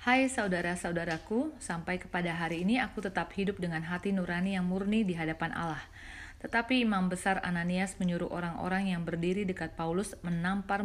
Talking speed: 155 wpm